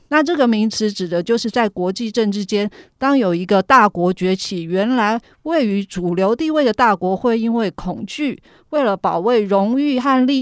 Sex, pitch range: female, 190-260 Hz